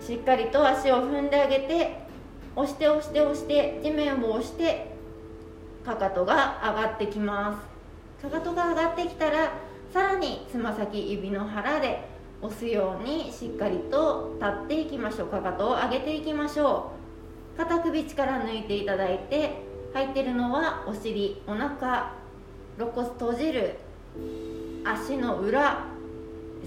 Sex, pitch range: female, 205-315 Hz